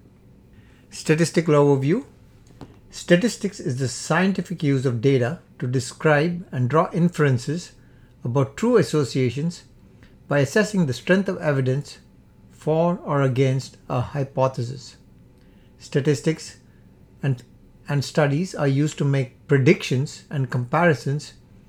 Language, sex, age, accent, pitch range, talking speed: English, male, 60-79, Indian, 130-160 Hz, 110 wpm